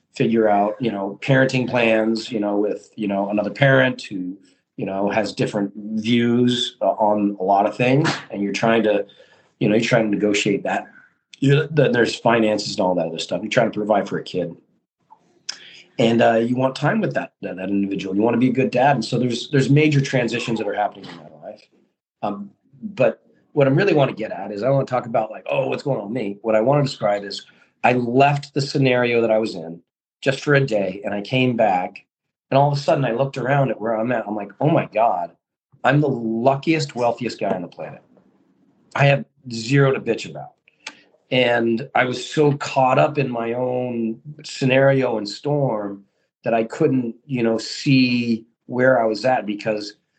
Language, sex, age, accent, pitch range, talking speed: English, male, 30-49, American, 105-135 Hz, 215 wpm